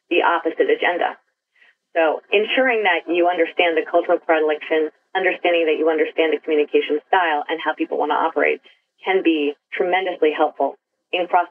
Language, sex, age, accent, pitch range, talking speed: English, female, 30-49, American, 160-205 Hz, 155 wpm